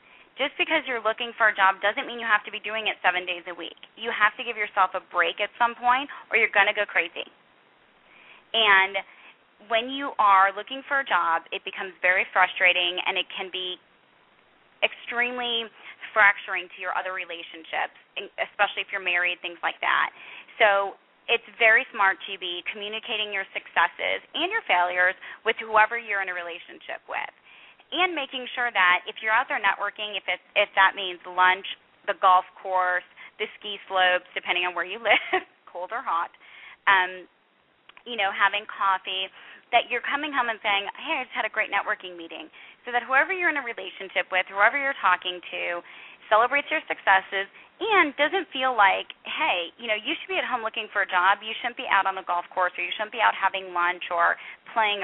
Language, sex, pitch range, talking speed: English, female, 185-235 Hz, 195 wpm